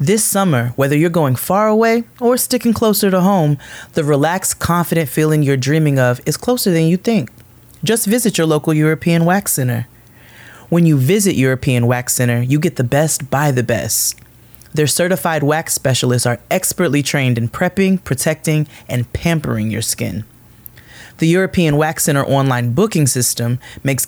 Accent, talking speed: American, 165 wpm